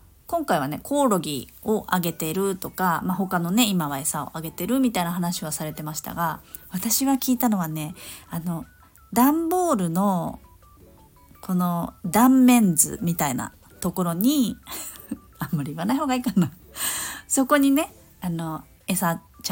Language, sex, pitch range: Japanese, female, 165-235 Hz